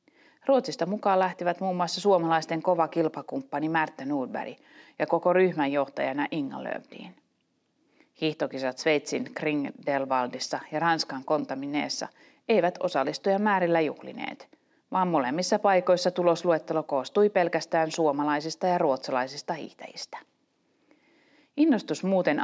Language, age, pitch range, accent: Finnish, 30-49, 145-185 Hz, native